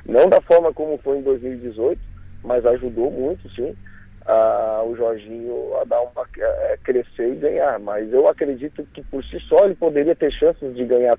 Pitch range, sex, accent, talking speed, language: 125-200 Hz, male, Brazilian, 180 wpm, Portuguese